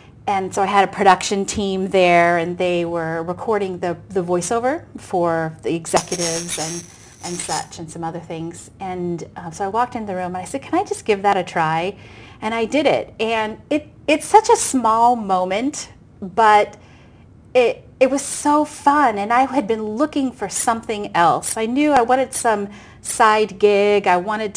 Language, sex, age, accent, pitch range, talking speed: English, female, 30-49, American, 190-245 Hz, 190 wpm